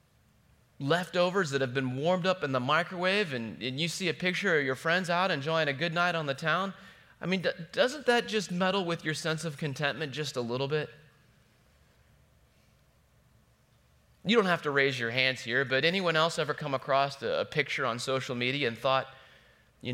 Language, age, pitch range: English, 30-49, 125-165 Hz